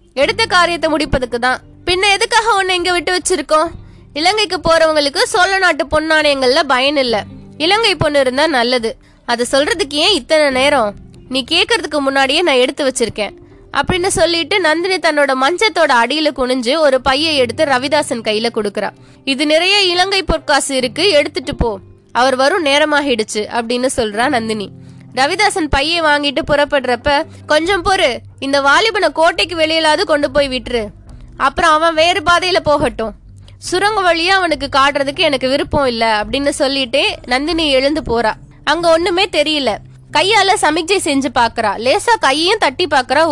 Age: 20-39